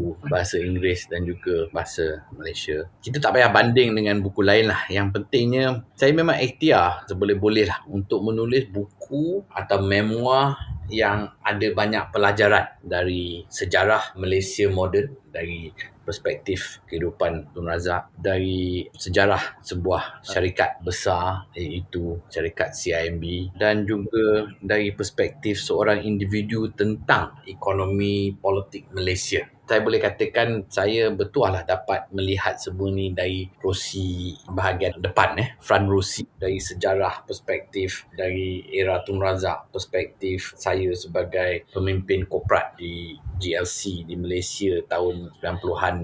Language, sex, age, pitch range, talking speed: Malay, male, 30-49, 90-105 Hz, 120 wpm